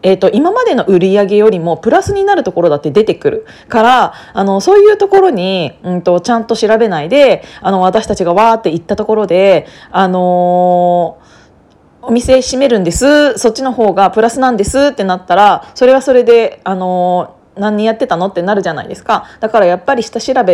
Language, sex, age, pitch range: Japanese, female, 20-39, 180-245 Hz